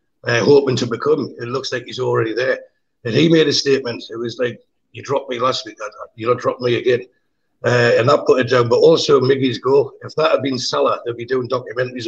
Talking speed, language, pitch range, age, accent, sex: 245 wpm, English, 125-155 Hz, 60-79, British, male